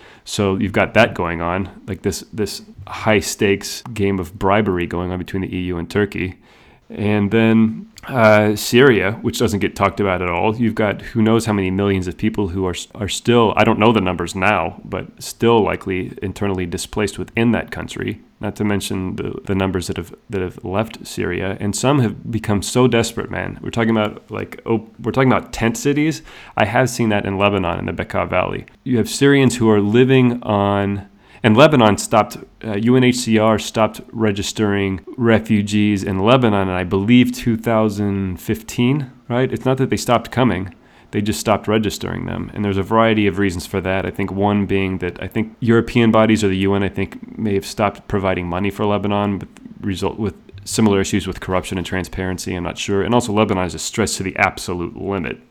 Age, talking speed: 30-49, 190 wpm